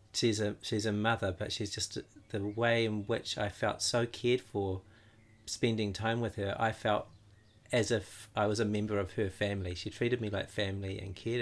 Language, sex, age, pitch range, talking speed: English, male, 40-59, 100-115 Hz, 205 wpm